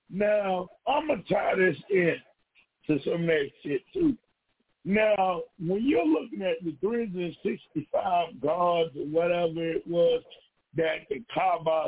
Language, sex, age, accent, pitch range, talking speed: English, male, 50-69, American, 170-245 Hz, 140 wpm